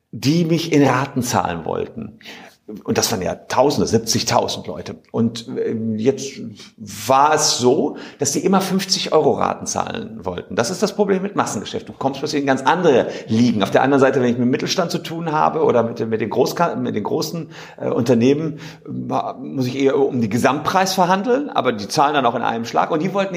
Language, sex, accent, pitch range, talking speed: German, male, German, 130-195 Hz, 205 wpm